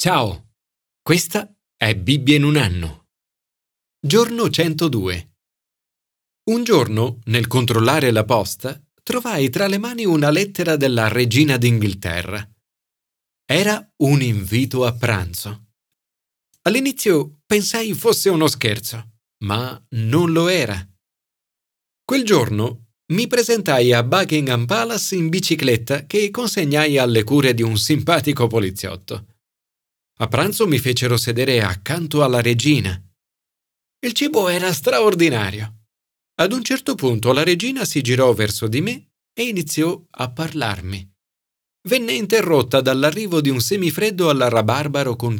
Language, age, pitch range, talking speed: Italian, 40-59, 110-170 Hz, 120 wpm